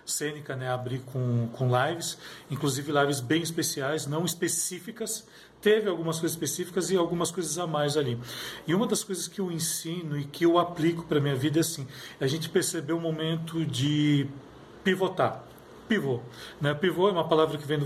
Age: 40-59